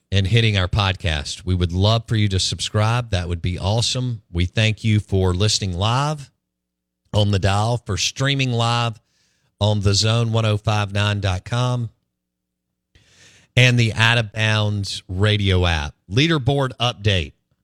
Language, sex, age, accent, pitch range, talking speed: English, male, 50-69, American, 95-120 Hz, 135 wpm